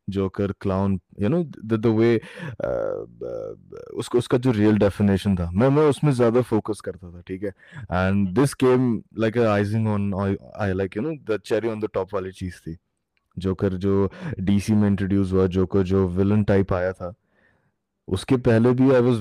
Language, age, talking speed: Hindi, 20-39, 40 wpm